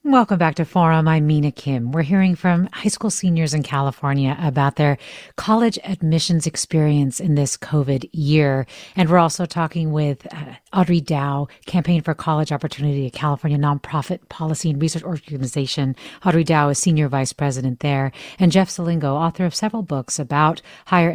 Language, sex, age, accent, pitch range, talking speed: English, female, 40-59, American, 145-175 Hz, 165 wpm